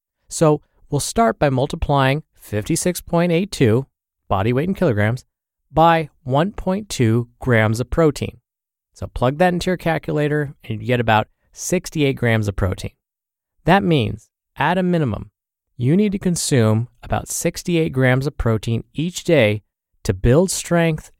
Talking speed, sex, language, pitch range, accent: 135 wpm, male, English, 110-160 Hz, American